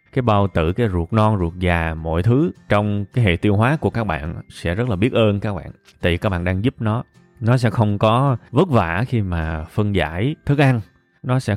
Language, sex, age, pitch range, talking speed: Vietnamese, male, 20-39, 95-120 Hz, 240 wpm